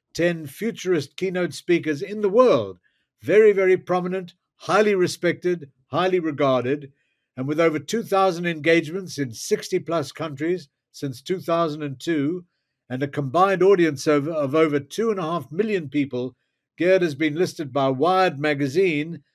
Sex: male